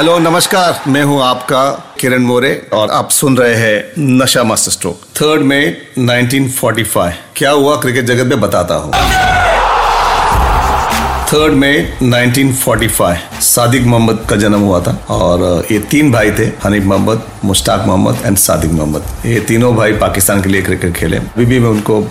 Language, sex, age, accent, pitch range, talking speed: Hindi, male, 40-59, native, 105-140 Hz, 165 wpm